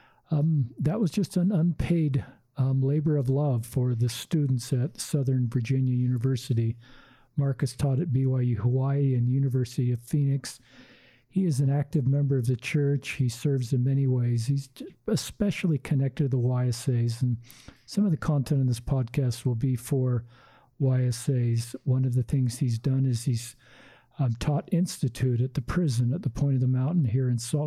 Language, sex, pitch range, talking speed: English, male, 130-150 Hz, 170 wpm